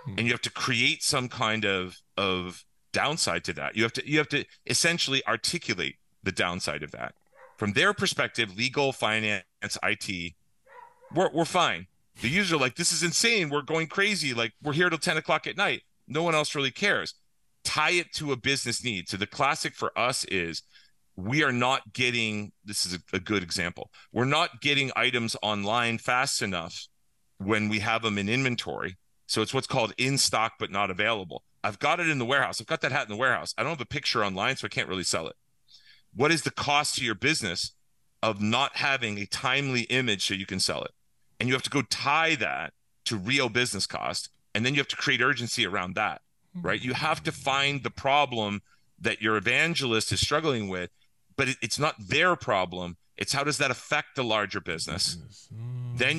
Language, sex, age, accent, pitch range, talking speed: English, male, 40-59, American, 105-140 Hz, 200 wpm